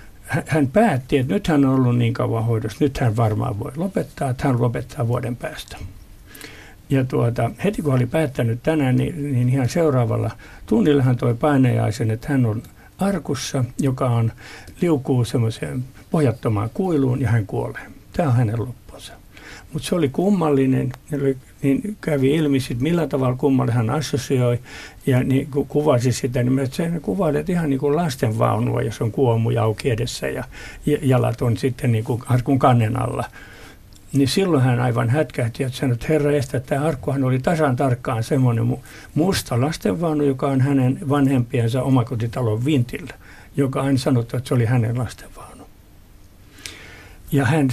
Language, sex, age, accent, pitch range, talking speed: Finnish, male, 60-79, native, 115-145 Hz, 155 wpm